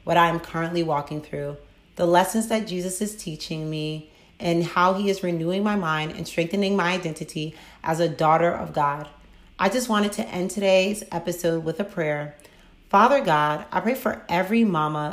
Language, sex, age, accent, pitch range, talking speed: English, female, 30-49, American, 160-195 Hz, 185 wpm